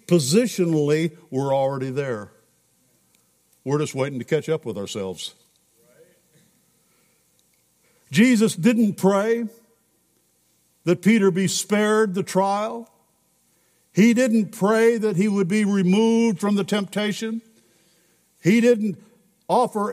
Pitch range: 170-225 Hz